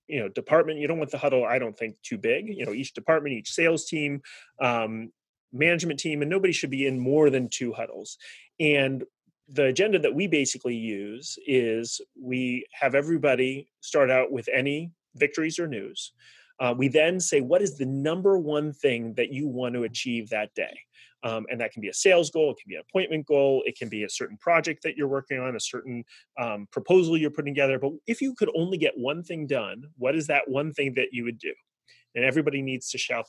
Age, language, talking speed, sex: 30-49, English, 220 wpm, male